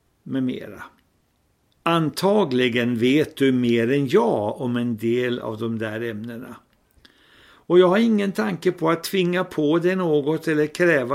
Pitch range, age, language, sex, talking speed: 115-155 Hz, 60-79, Swedish, male, 150 wpm